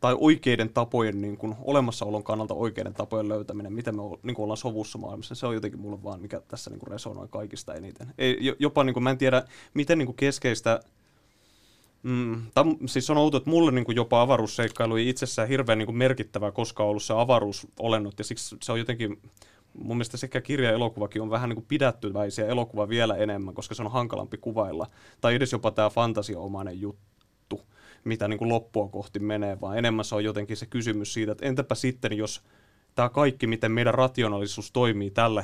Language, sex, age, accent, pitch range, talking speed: Finnish, male, 20-39, native, 105-130 Hz, 190 wpm